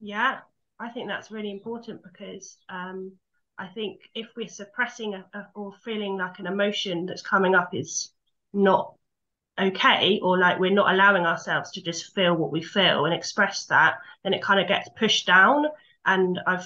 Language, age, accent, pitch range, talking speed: English, 20-39, British, 165-200 Hz, 175 wpm